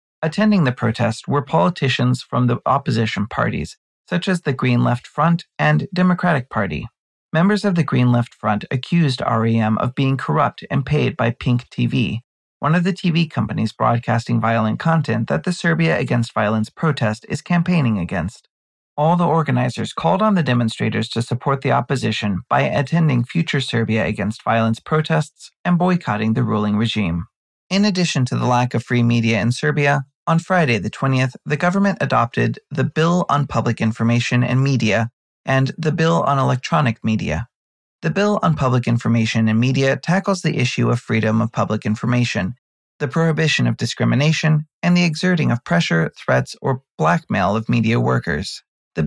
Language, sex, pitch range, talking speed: English, male, 115-165 Hz, 165 wpm